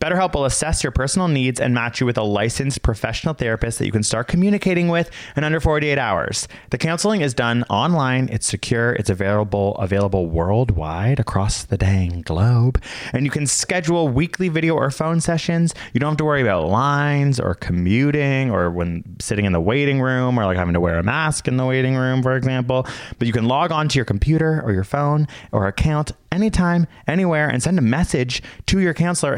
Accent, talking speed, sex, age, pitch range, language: American, 200 wpm, male, 20-39, 105-150 Hz, English